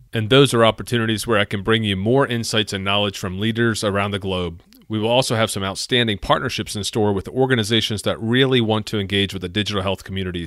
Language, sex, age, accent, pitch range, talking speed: English, male, 40-59, American, 100-125 Hz, 225 wpm